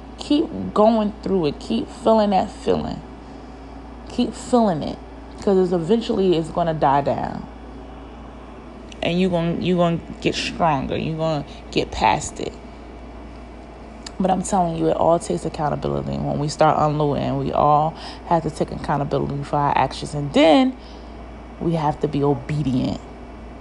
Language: English